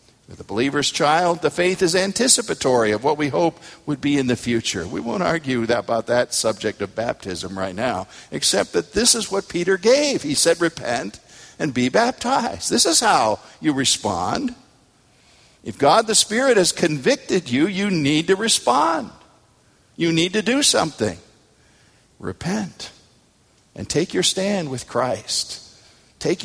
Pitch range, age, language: 115-170 Hz, 50-69, English